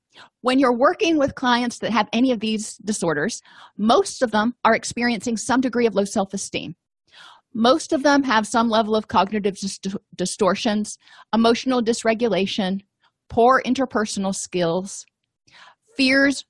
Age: 40-59